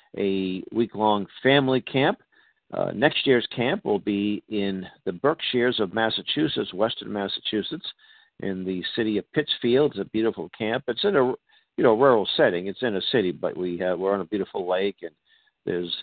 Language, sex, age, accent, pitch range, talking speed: English, male, 50-69, American, 100-125 Hz, 175 wpm